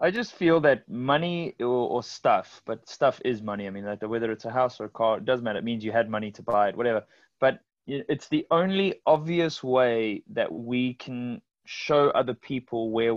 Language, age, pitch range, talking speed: English, 20-39, 105-130 Hz, 210 wpm